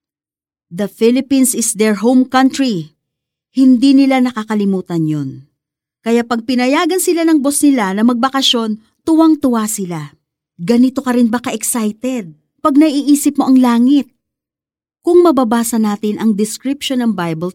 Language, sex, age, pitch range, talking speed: Filipino, female, 40-59, 210-270 Hz, 130 wpm